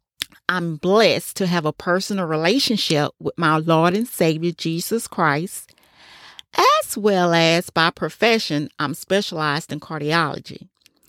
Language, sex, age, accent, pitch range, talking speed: English, female, 40-59, American, 165-220 Hz, 125 wpm